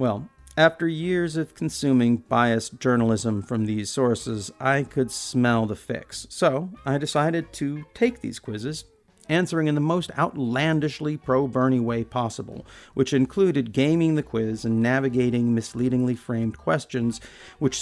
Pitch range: 110-135 Hz